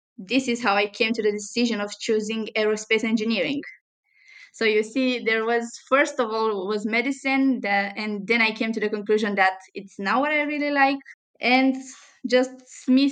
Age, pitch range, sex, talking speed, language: 20-39, 215-260 Hz, female, 180 wpm, English